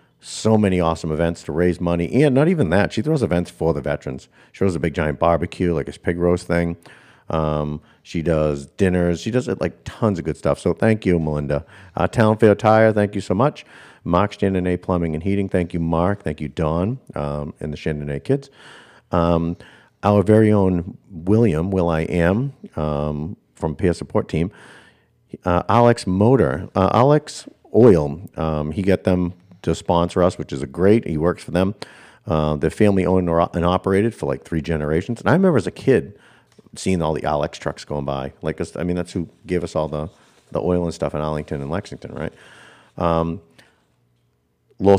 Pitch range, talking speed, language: 80-100 Hz, 190 wpm, English